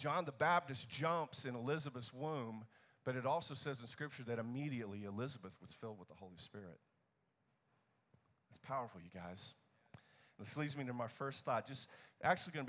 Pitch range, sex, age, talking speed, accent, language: 115-140 Hz, male, 40-59, 175 wpm, American, English